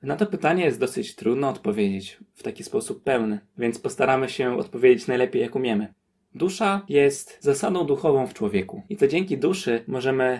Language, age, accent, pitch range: Polish, 20-39, native, 125-200 Hz